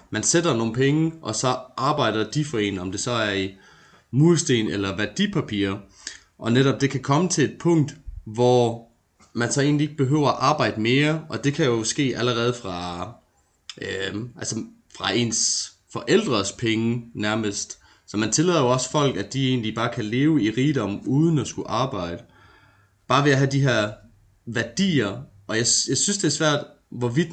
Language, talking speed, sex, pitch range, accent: Danish, 180 wpm, male, 105-140 Hz, native